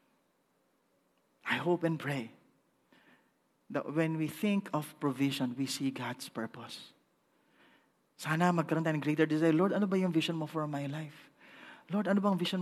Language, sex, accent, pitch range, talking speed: English, male, Filipino, 155-245 Hz, 150 wpm